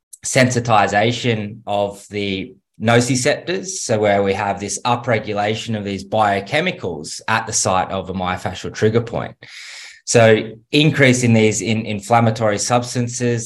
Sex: male